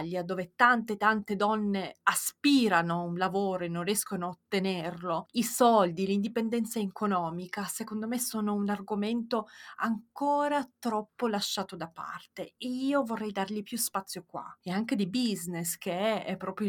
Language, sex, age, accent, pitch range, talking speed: Italian, female, 20-39, native, 185-225 Hz, 145 wpm